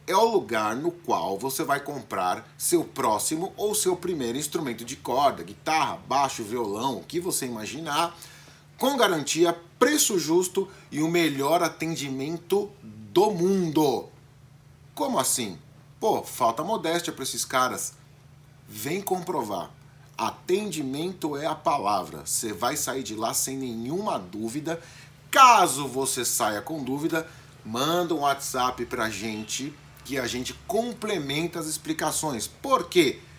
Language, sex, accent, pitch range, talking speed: Portuguese, male, Brazilian, 135-195 Hz, 130 wpm